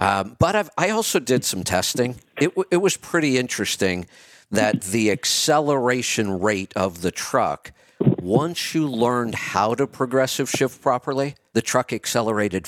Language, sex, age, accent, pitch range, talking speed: English, male, 50-69, American, 100-135 Hz, 145 wpm